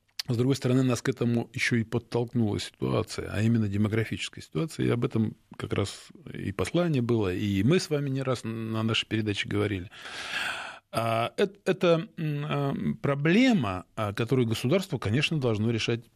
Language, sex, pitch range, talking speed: Russian, male, 100-130 Hz, 145 wpm